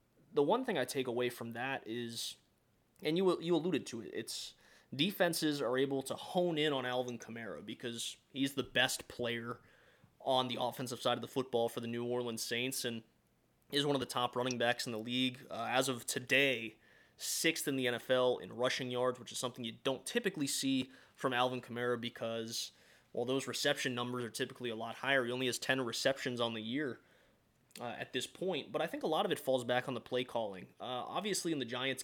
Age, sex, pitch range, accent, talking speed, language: 20-39, male, 120-135 Hz, American, 215 wpm, English